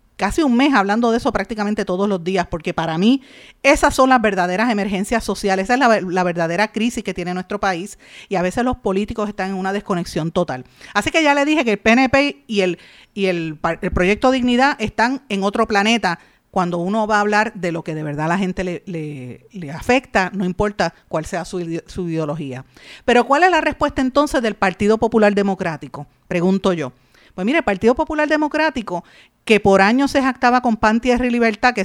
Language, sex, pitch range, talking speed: Spanish, female, 190-250 Hz, 200 wpm